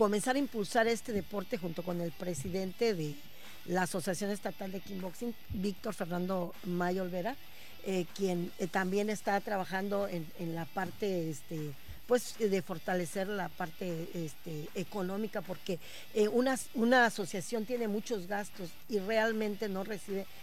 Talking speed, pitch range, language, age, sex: 145 wpm, 180-225 Hz, Spanish, 40-59, female